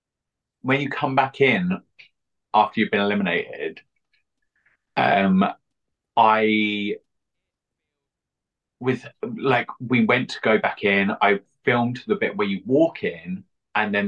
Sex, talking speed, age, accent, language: male, 125 wpm, 30-49, British, English